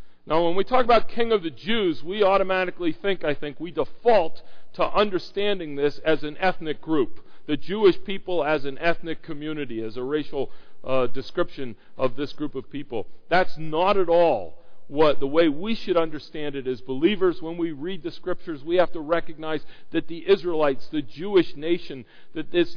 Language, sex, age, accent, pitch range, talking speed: English, male, 50-69, American, 140-185 Hz, 185 wpm